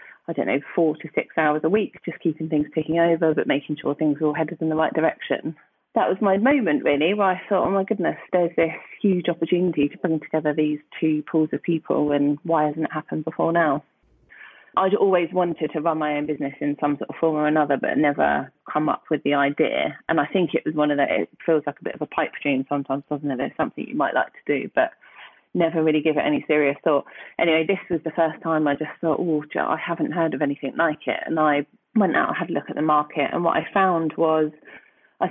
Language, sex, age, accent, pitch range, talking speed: English, female, 30-49, British, 150-170 Hz, 245 wpm